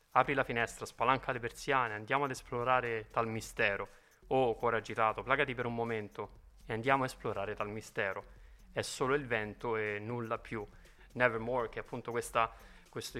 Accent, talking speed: native, 170 wpm